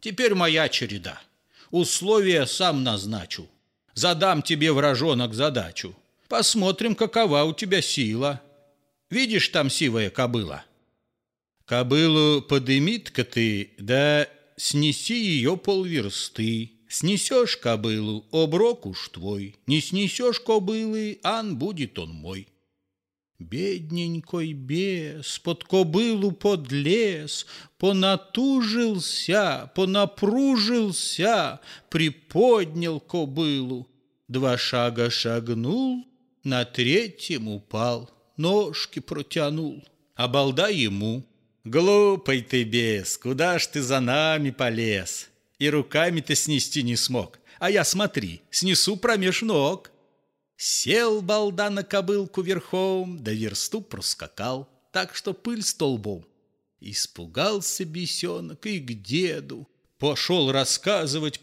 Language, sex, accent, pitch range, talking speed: Russian, male, native, 120-185 Hz, 95 wpm